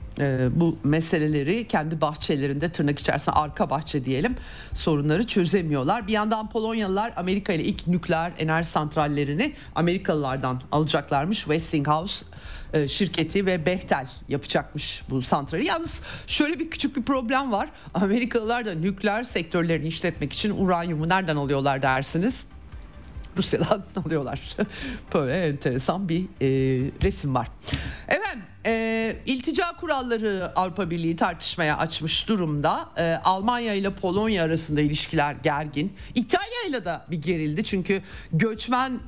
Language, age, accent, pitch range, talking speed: Turkish, 50-69, native, 155-220 Hz, 115 wpm